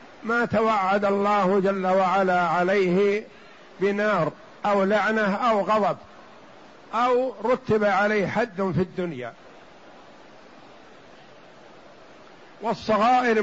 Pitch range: 190-220 Hz